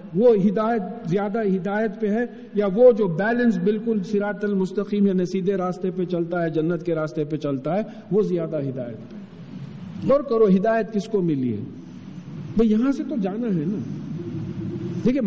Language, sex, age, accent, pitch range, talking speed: English, male, 50-69, Indian, 175-245 Hz, 175 wpm